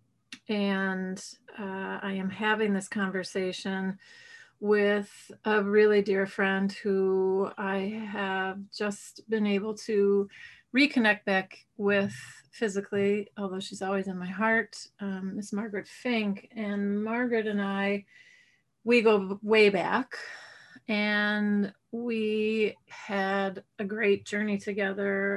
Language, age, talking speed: English, 30-49, 115 wpm